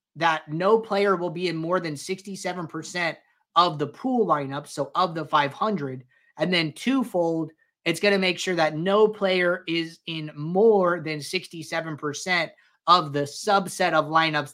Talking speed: 155 wpm